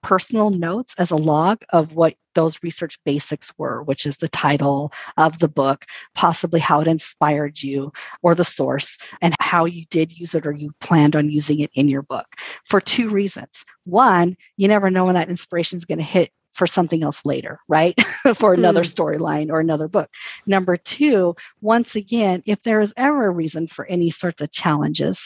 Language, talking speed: English, 190 wpm